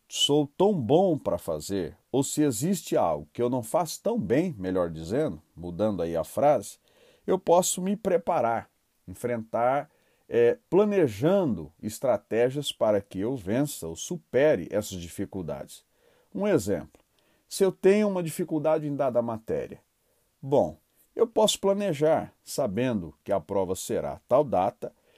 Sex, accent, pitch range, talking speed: male, Brazilian, 100-155 Hz, 135 wpm